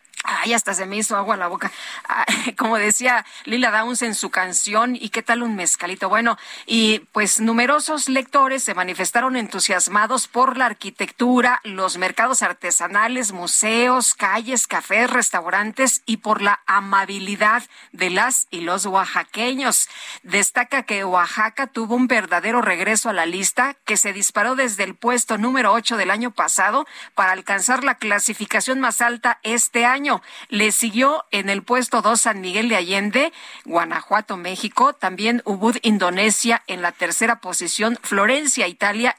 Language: Spanish